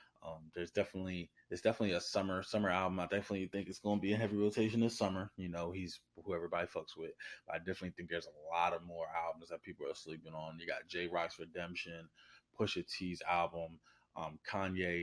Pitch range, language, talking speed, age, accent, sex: 85-95 Hz, English, 210 wpm, 20-39, American, male